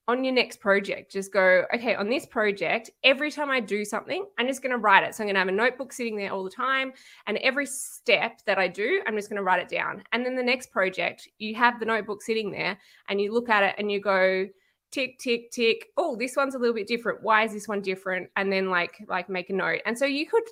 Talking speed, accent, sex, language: 265 wpm, Australian, female, English